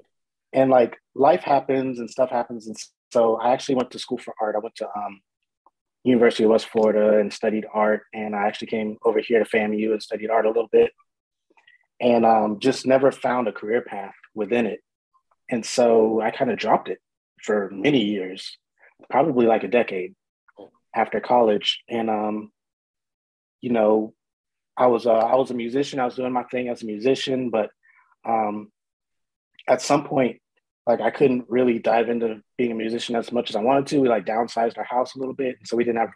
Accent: American